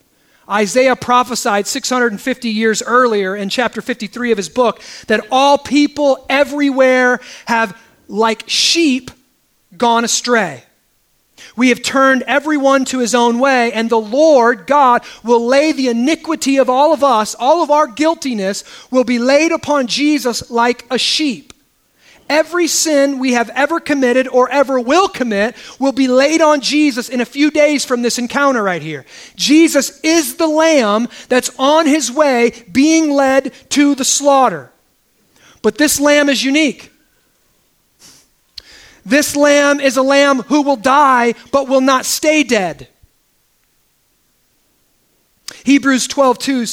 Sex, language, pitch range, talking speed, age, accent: male, English, 235-290 Hz, 140 wpm, 30-49, American